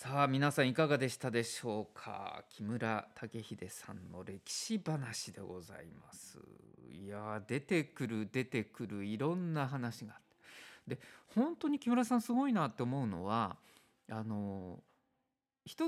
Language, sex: Japanese, male